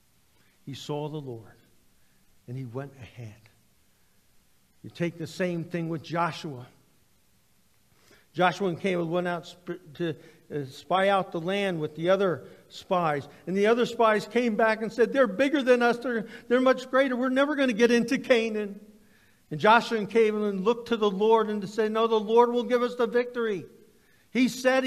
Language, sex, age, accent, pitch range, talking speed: English, male, 50-69, American, 135-215 Hz, 175 wpm